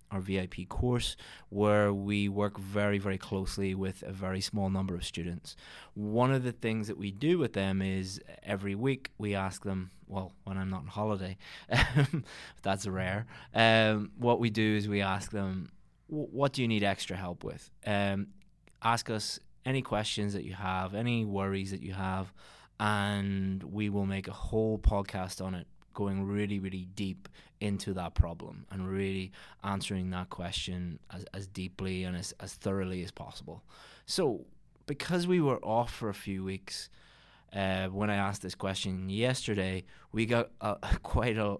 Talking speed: 170 wpm